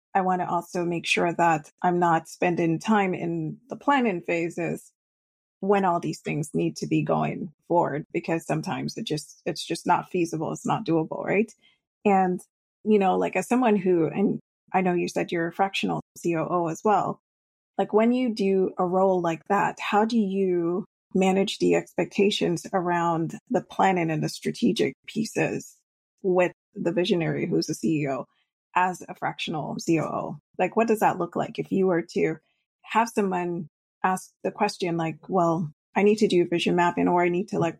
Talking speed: 180 wpm